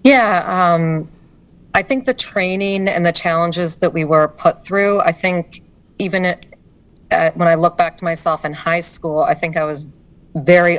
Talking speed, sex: 185 wpm, female